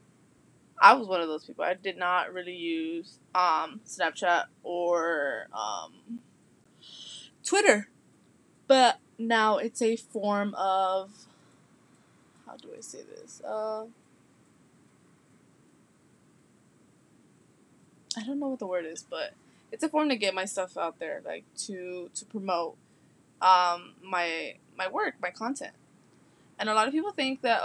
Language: English